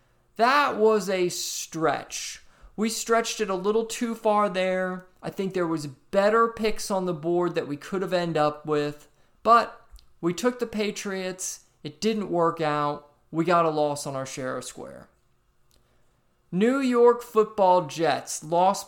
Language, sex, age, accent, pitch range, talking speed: English, male, 20-39, American, 160-215 Hz, 160 wpm